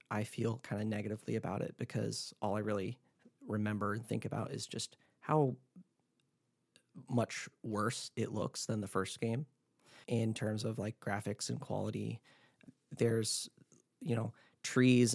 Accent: American